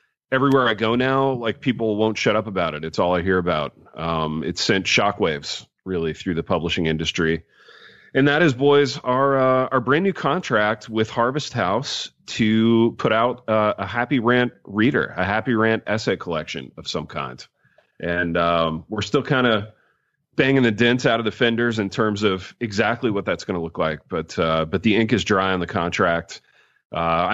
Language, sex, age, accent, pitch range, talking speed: English, male, 40-59, American, 90-120 Hz, 190 wpm